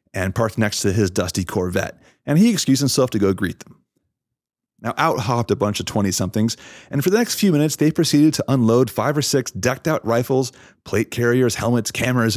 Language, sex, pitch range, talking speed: English, male, 105-140 Hz, 205 wpm